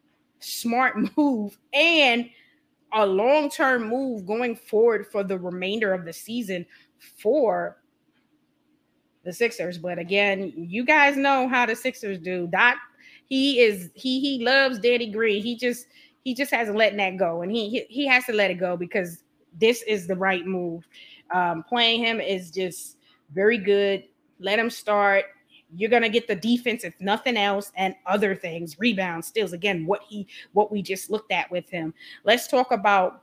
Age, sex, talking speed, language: 20-39, female, 165 wpm, English